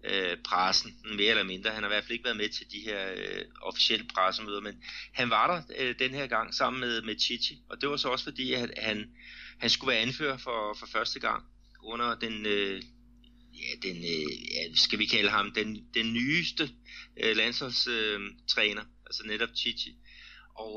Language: Danish